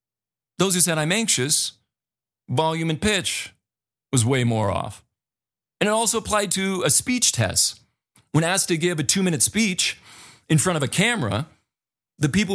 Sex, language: male, English